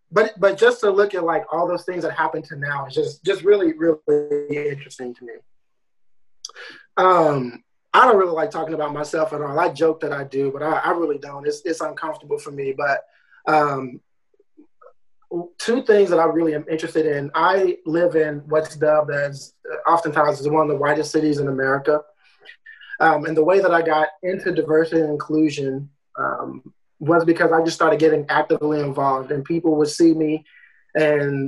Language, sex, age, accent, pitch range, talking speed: English, male, 20-39, American, 150-180 Hz, 185 wpm